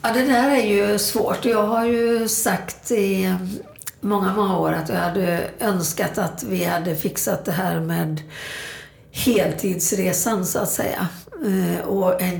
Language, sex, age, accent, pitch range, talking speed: Swedish, female, 60-79, native, 165-200 Hz, 150 wpm